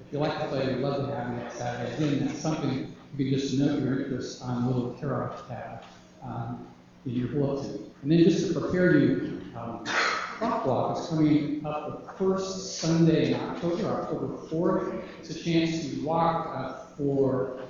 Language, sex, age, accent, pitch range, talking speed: English, male, 50-69, American, 130-160 Hz, 200 wpm